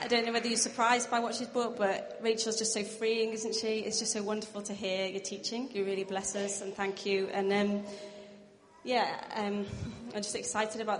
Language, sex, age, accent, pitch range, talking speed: English, female, 20-39, British, 195-225 Hz, 220 wpm